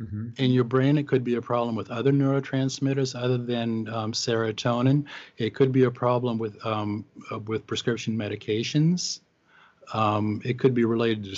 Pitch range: 110-135 Hz